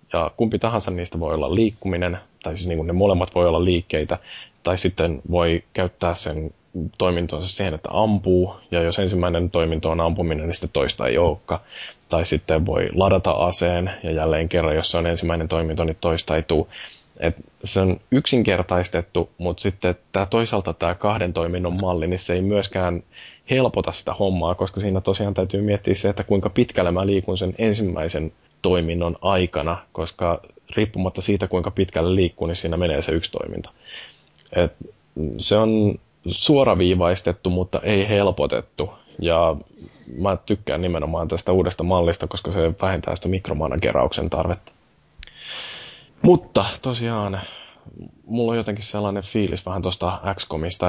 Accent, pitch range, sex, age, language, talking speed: native, 85-100 Hz, male, 10-29, Finnish, 145 wpm